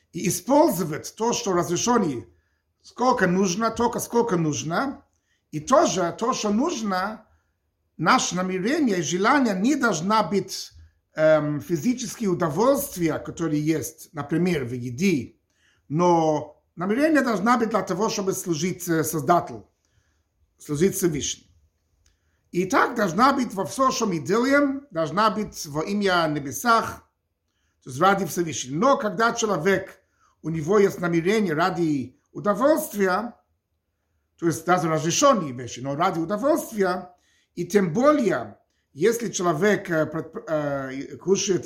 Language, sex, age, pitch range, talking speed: Russian, male, 50-69, 145-215 Hz, 115 wpm